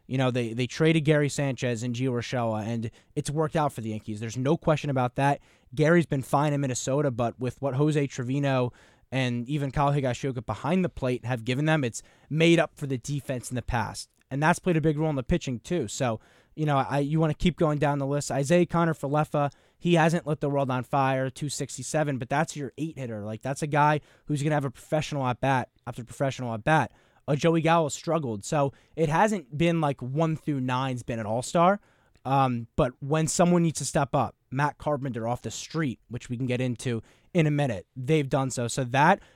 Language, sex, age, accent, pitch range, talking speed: English, male, 10-29, American, 125-155 Hz, 225 wpm